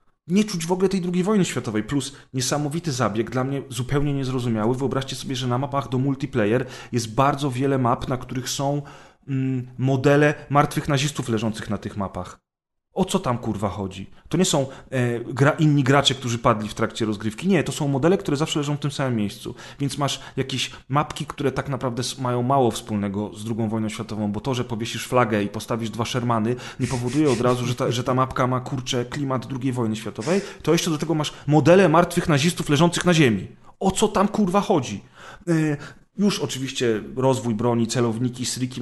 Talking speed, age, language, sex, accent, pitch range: 195 wpm, 30-49, Polish, male, native, 115-145 Hz